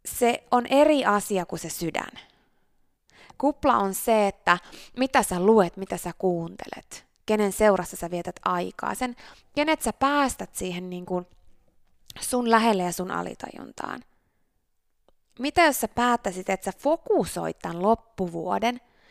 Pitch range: 175-250 Hz